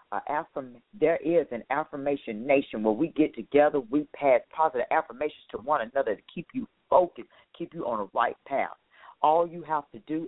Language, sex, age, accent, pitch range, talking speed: English, female, 40-59, American, 125-180 Hz, 185 wpm